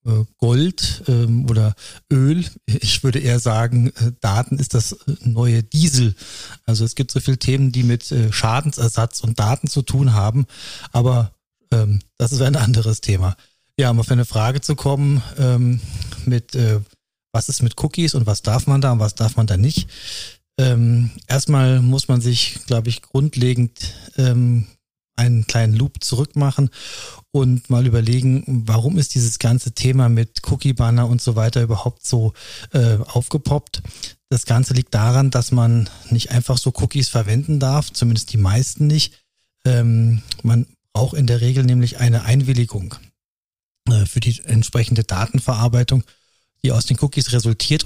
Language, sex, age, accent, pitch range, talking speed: German, male, 40-59, German, 115-130 Hz, 155 wpm